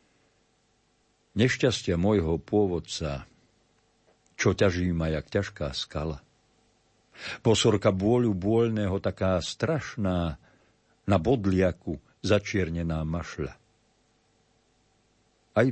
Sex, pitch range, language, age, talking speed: male, 85-110 Hz, Slovak, 50-69, 75 wpm